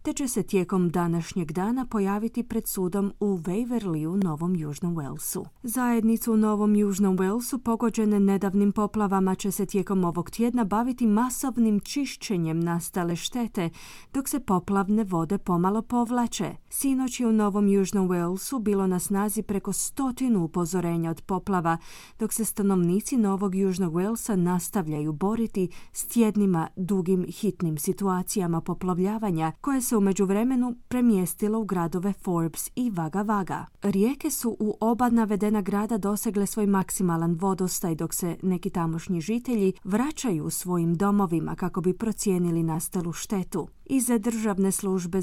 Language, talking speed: Croatian, 140 wpm